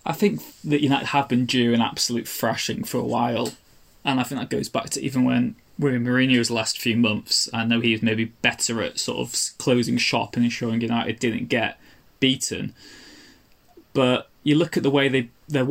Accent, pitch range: British, 115-130 Hz